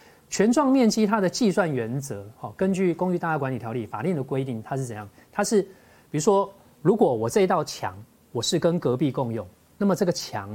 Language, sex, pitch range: Chinese, male, 125-185 Hz